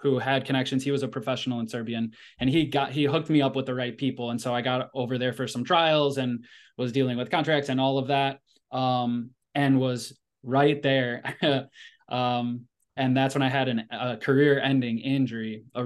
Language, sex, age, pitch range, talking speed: English, male, 20-39, 125-145 Hz, 205 wpm